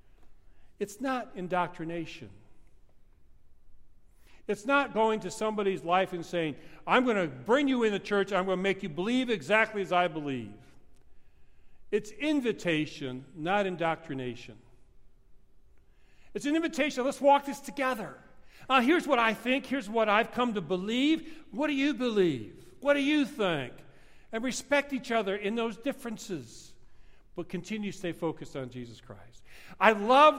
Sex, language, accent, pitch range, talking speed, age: male, English, American, 160-250 Hz, 150 wpm, 50-69